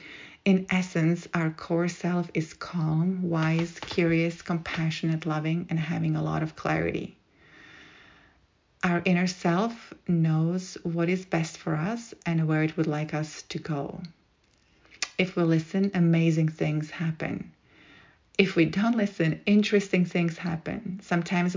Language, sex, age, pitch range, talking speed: English, female, 30-49, 160-185 Hz, 135 wpm